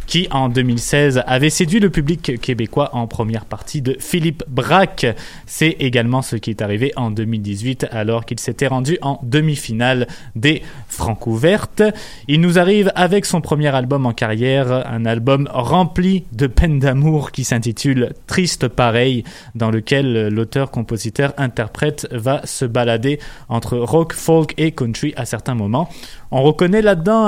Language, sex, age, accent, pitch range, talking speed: French, male, 20-39, French, 125-160 Hz, 145 wpm